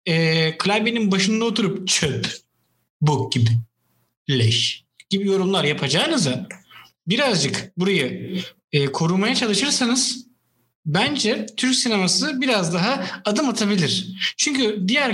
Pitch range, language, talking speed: 140-200 Hz, Turkish, 90 wpm